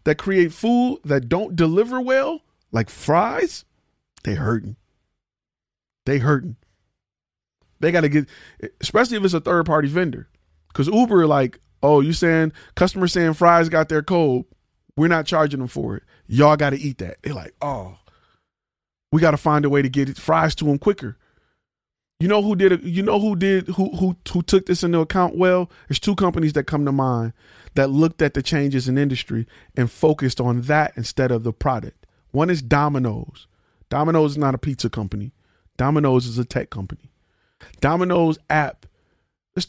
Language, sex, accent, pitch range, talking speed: English, male, American, 125-175 Hz, 175 wpm